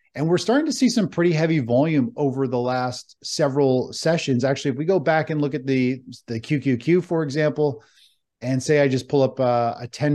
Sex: male